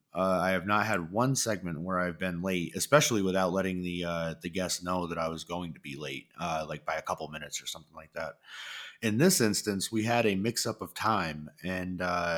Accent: American